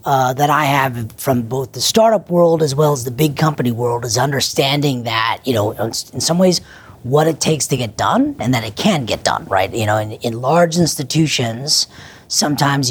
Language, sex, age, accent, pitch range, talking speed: English, female, 40-59, American, 110-145 Hz, 205 wpm